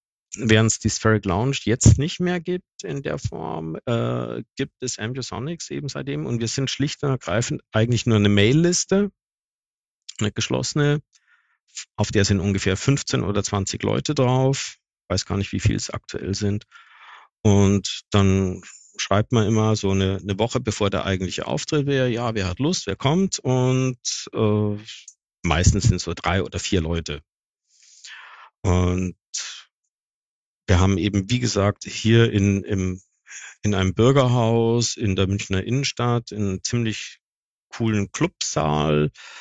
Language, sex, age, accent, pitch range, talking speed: German, male, 50-69, German, 95-125 Hz, 150 wpm